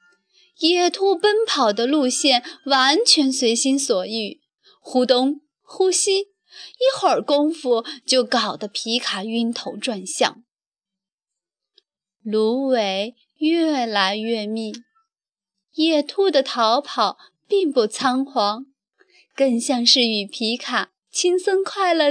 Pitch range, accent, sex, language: 230-355 Hz, native, female, Chinese